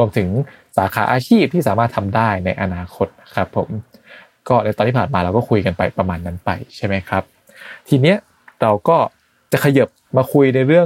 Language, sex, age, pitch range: Thai, male, 20-39, 100-130 Hz